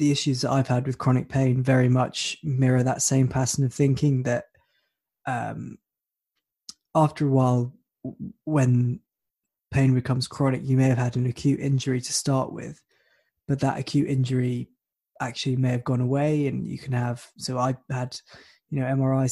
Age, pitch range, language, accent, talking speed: 20-39, 130-140 Hz, English, British, 170 wpm